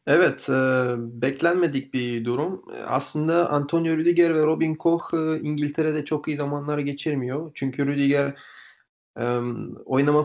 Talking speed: 125 wpm